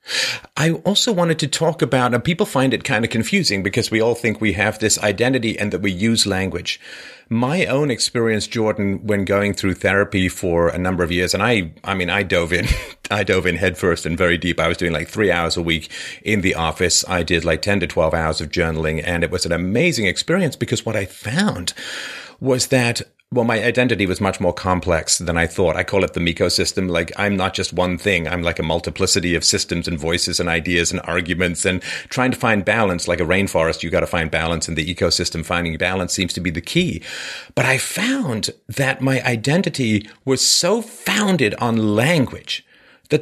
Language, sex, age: English, male, 40-59